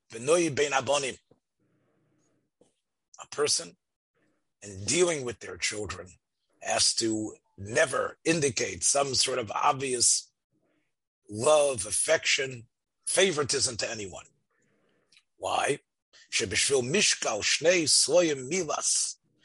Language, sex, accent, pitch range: English, male, American, 120-185 Hz